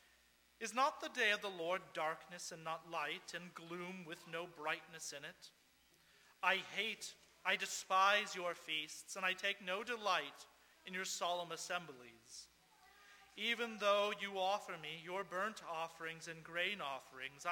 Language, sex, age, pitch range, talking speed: English, male, 40-59, 160-210 Hz, 150 wpm